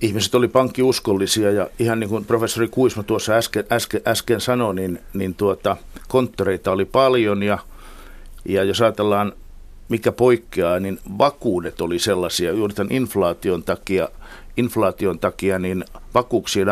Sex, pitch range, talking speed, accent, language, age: male, 95-115 Hz, 135 wpm, native, Finnish, 60-79